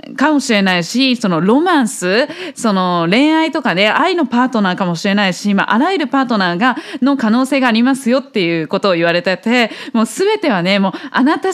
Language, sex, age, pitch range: Japanese, female, 20-39, 220-305 Hz